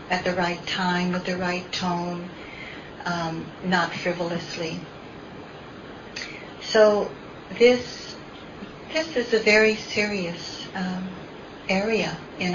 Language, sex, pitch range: English, female, 175-200 Hz